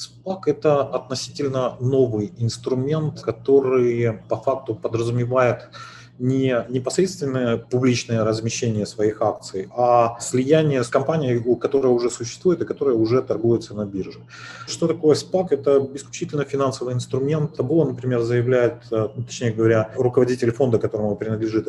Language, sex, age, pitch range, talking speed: Russian, male, 30-49, 110-130 Hz, 125 wpm